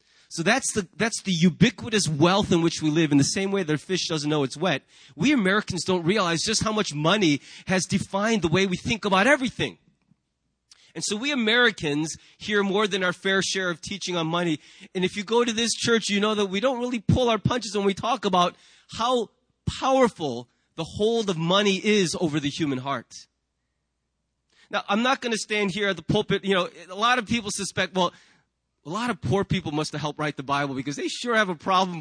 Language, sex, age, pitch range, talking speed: English, male, 30-49, 165-220 Hz, 220 wpm